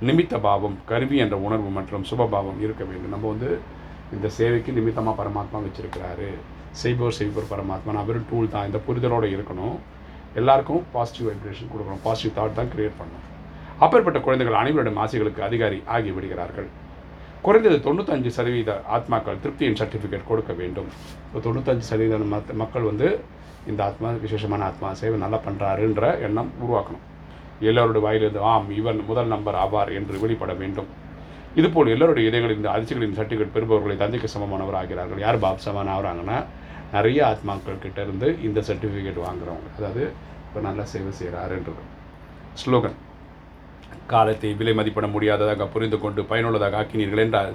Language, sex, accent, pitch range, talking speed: Tamil, male, native, 95-110 Hz, 130 wpm